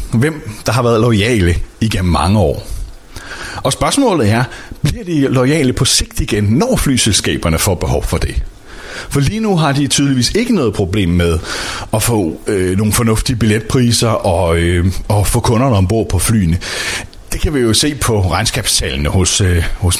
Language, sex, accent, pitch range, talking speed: Danish, male, native, 95-130 Hz, 170 wpm